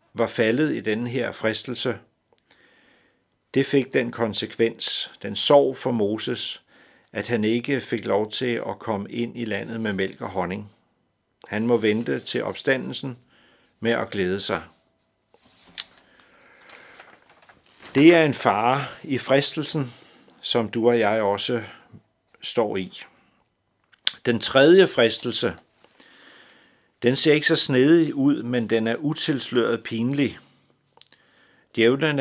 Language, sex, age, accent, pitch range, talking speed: Danish, male, 50-69, native, 105-130 Hz, 125 wpm